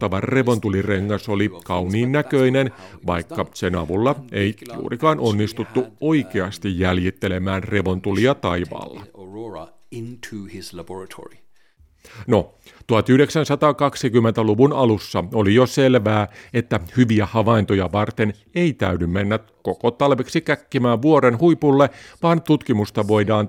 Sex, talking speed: male, 90 wpm